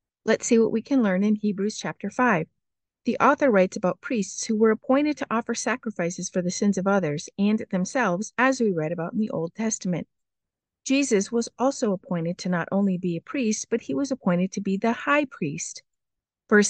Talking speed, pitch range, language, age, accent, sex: 200 wpm, 190-240 Hz, English, 50-69, American, female